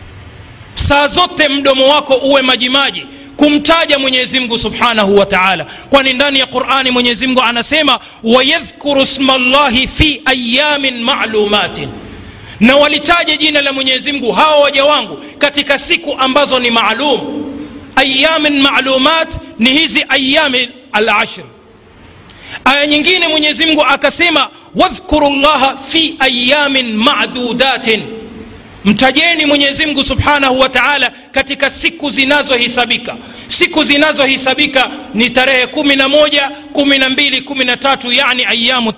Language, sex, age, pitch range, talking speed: Swahili, male, 40-59, 240-285 Hz, 110 wpm